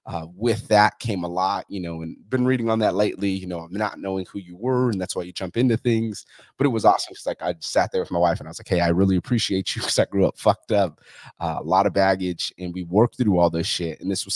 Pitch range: 90-105 Hz